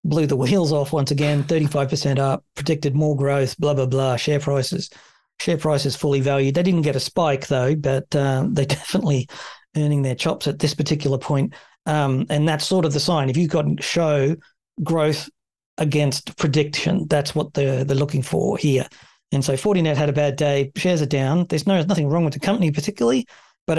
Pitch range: 140-160 Hz